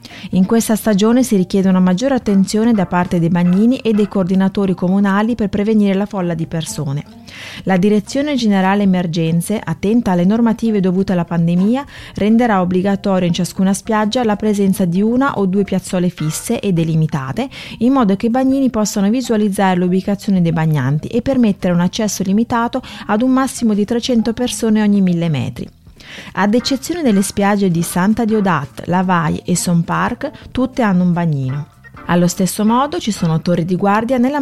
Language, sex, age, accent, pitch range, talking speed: Italian, female, 30-49, native, 175-220 Hz, 165 wpm